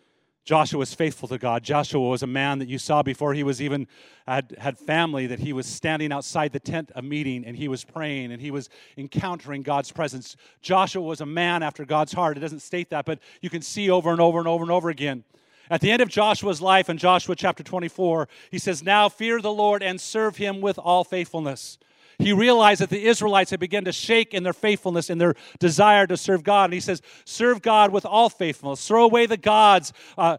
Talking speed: 225 wpm